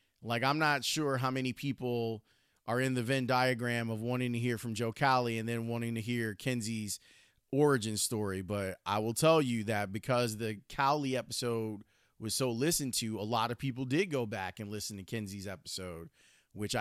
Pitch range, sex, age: 110-145 Hz, male, 30-49